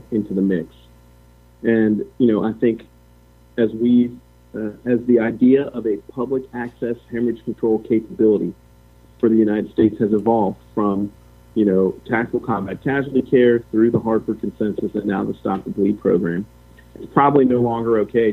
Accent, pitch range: American, 80-115 Hz